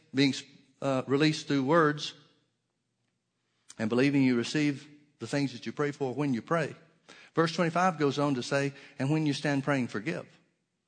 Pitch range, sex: 115-150 Hz, male